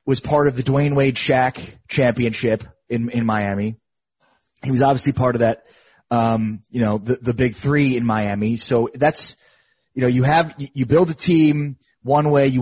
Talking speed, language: 185 wpm, English